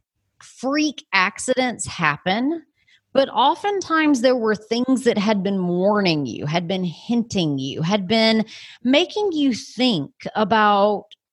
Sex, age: female, 30-49